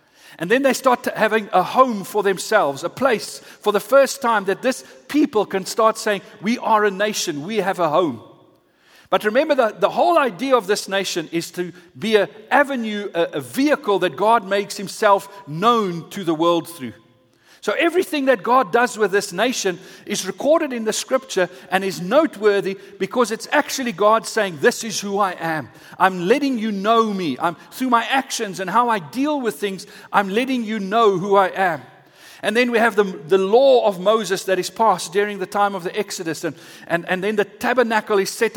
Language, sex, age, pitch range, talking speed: English, male, 50-69, 190-235 Hz, 200 wpm